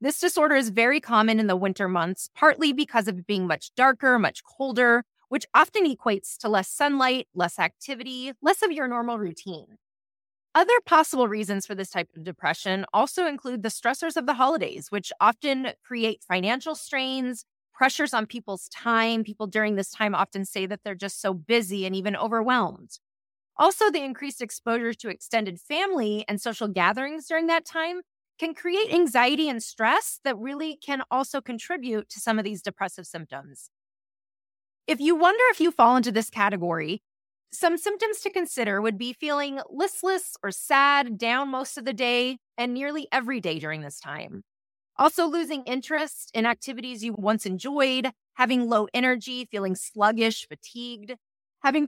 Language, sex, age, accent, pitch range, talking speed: English, female, 20-39, American, 205-290 Hz, 165 wpm